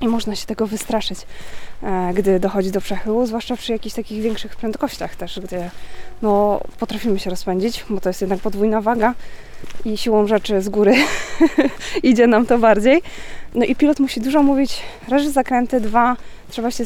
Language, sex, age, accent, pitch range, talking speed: Polish, female, 20-39, native, 215-250 Hz, 165 wpm